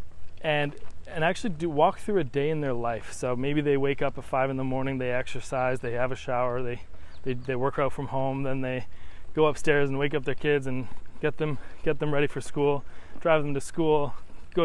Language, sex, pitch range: English, male, 130-150 Hz